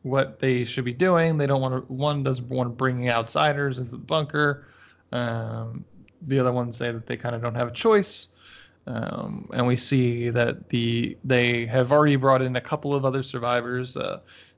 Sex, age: male, 20-39